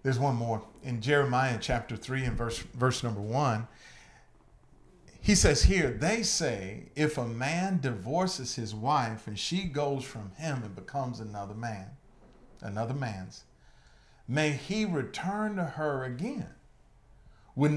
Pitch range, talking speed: 110-155 Hz, 140 wpm